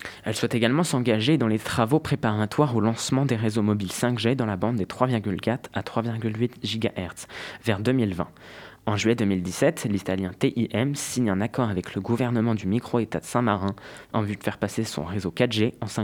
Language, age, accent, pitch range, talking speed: French, 20-39, French, 105-125 Hz, 180 wpm